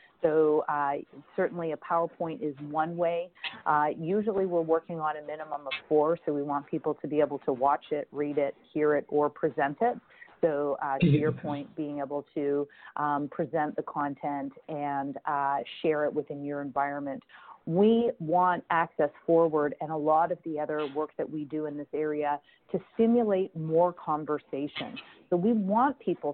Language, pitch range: English, 145-170 Hz